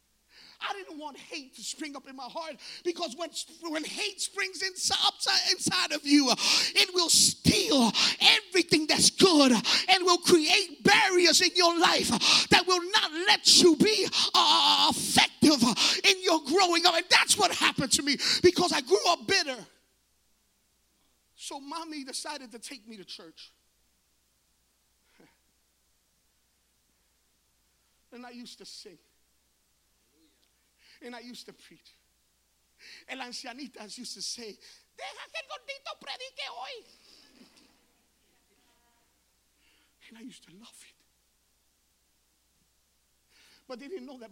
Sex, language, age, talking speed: male, English, 30-49, 130 wpm